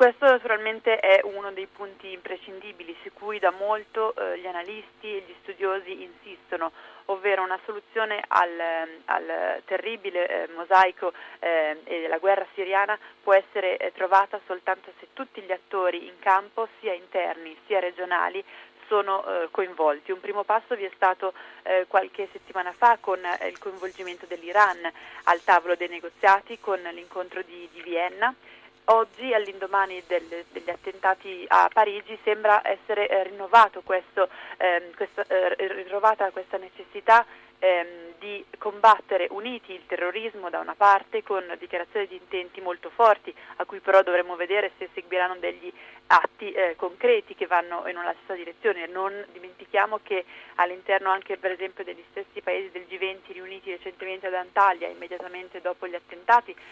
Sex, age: female, 30-49